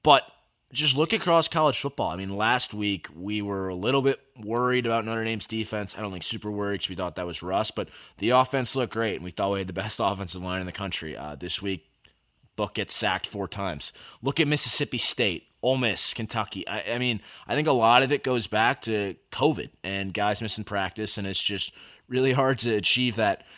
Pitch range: 95-125 Hz